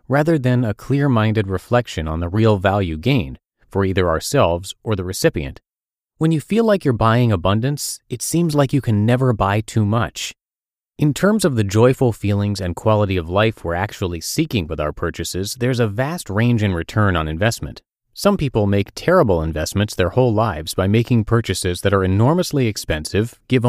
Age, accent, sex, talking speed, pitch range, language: 30-49, American, male, 180 wpm, 95-125 Hz, English